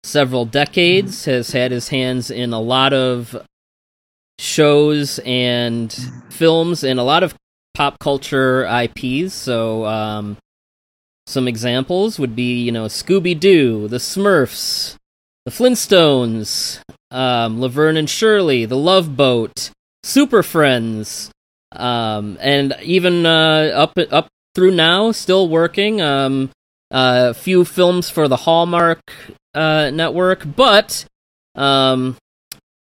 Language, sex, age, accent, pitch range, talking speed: English, male, 20-39, American, 120-165 Hz, 115 wpm